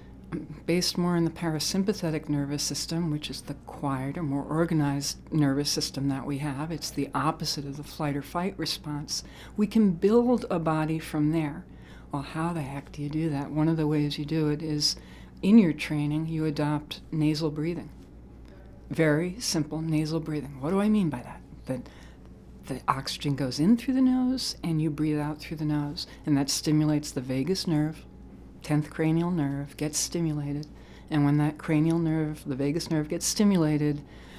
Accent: American